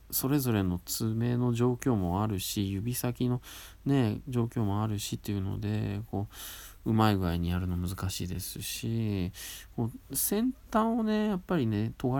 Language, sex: Japanese, male